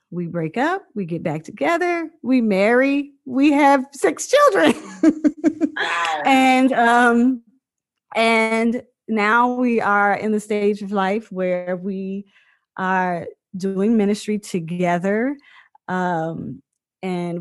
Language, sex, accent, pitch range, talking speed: English, female, American, 175-225 Hz, 110 wpm